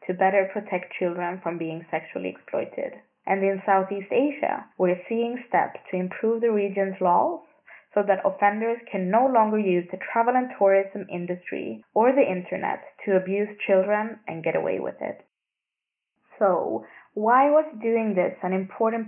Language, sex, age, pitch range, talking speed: English, female, 20-39, 175-220 Hz, 155 wpm